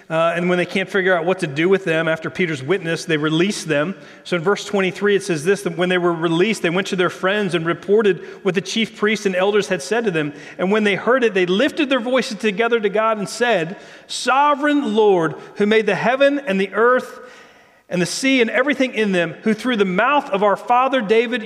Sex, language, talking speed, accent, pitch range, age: male, English, 240 wpm, American, 175-230 Hz, 40-59